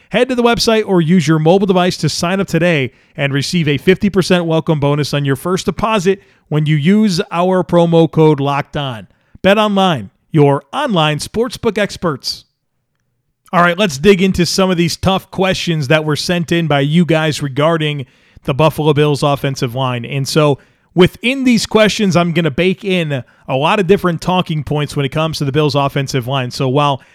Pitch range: 140-180 Hz